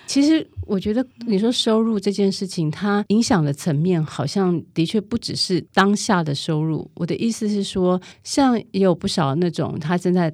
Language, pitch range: Chinese, 155-200 Hz